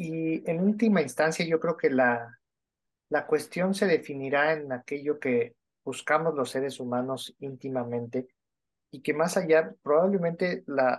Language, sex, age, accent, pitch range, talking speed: Spanish, male, 50-69, Mexican, 125-155 Hz, 140 wpm